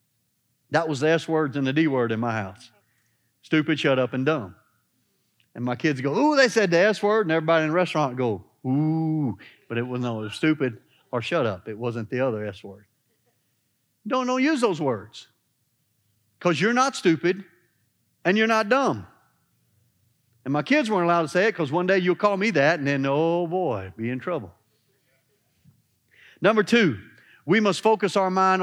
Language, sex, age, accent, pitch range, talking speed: English, male, 40-59, American, 130-205 Hz, 190 wpm